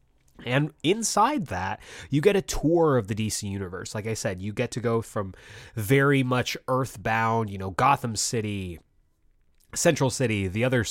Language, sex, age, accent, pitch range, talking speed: English, male, 20-39, American, 105-140 Hz, 165 wpm